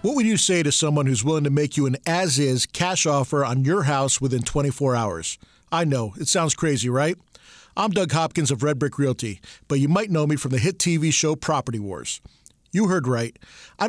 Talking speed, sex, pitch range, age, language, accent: 215 wpm, male, 140-185 Hz, 40-59, English, American